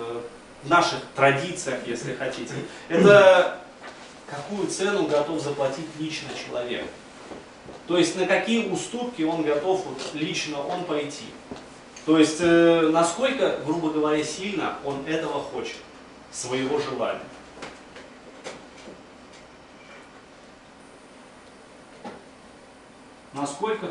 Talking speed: 90 wpm